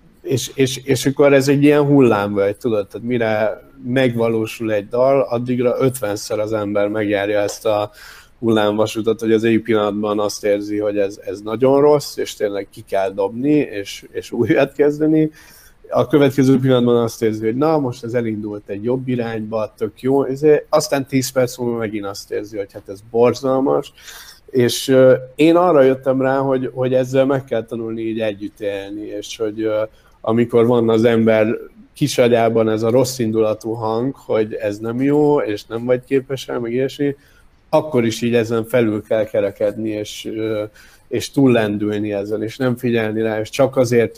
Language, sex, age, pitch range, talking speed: Hungarian, male, 50-69, 110-130 Hz, 165 wpm